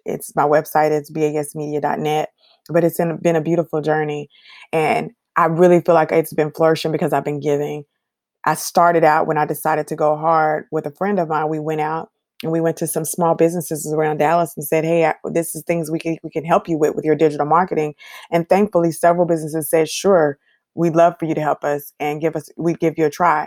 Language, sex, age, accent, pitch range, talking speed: English, female, 20-39, American, 155-175 Hz, 225 wpm